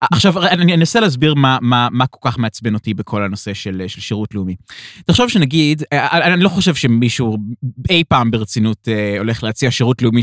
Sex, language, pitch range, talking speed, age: male, Hebrew, 115-180 Hz, 175 wpm, 20-39